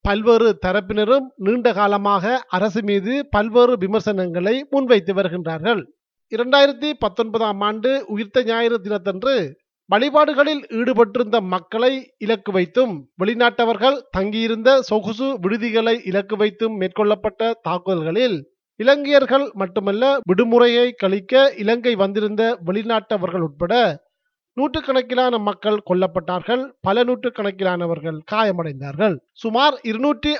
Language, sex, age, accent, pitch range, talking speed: Tamil, male, 30-49, native, 200-250 Hz, 95 wpm